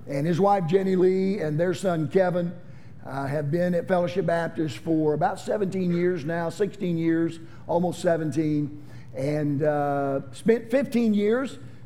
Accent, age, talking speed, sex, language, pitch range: American, 50-69, 145 wpm, male, English, 145-185 Hz